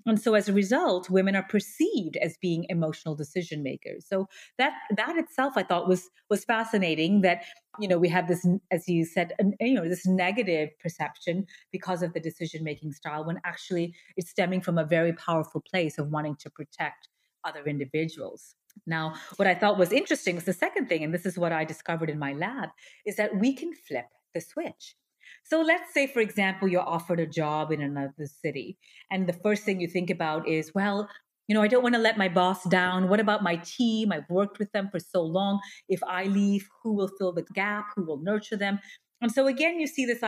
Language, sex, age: English, female, 30-49